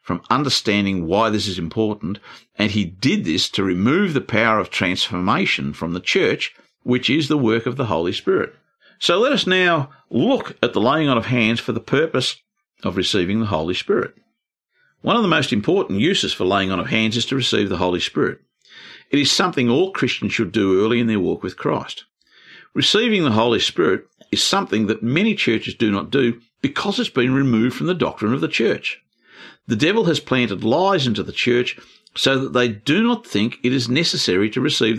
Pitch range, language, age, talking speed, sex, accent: 110-175 Hz, English, 50-69, 200 wpm, male, Australian